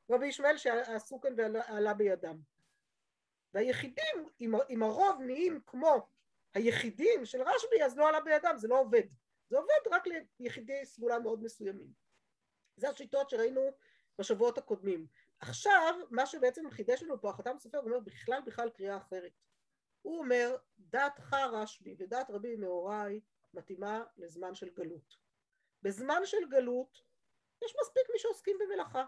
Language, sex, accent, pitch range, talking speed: Hebrew, female, native, 220-320 Hz, 135 wpm